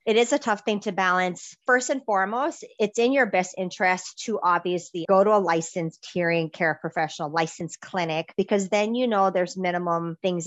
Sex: female